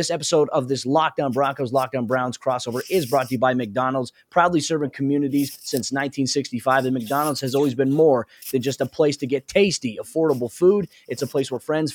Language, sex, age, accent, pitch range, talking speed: English, male, 20-39, American, 130-155 Hz, 200 wpm